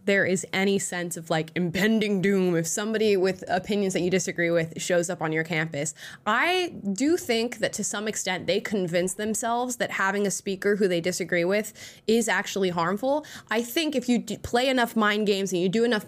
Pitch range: 175-220 Hz